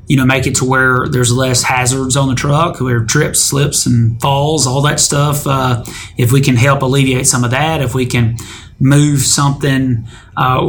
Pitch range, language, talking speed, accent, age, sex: 125-140 Hz, English, 195 wpm, American, 30-49, male